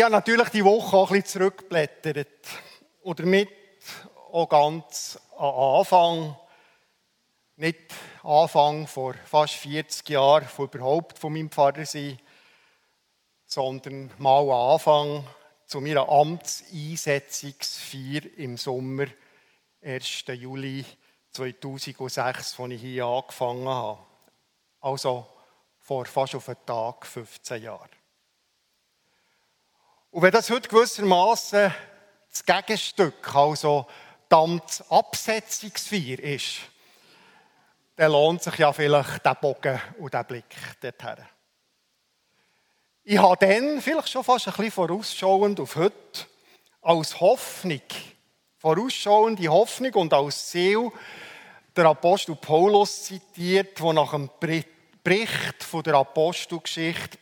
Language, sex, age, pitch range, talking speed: German, male, 50-69, 140-190 Hz, 110 wpm